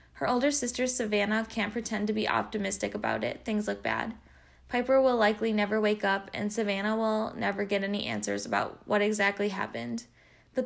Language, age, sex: English, 10-29, female